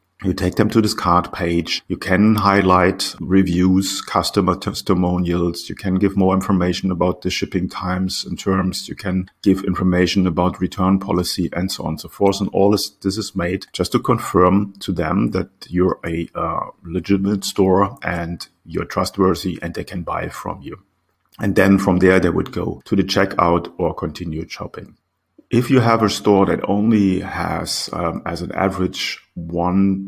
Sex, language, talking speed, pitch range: male, English, 175 wpm, 90-100 Hz